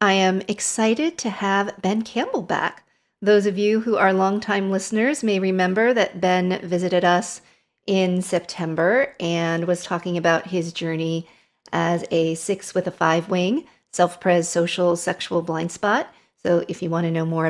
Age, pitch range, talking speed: 40-59, 175-215 Hz, 165 wpm